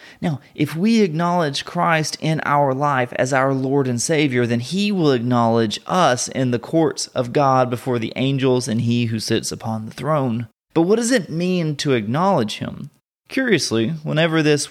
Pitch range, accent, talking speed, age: 115-155 Hz, American, 180 wpm, 30-49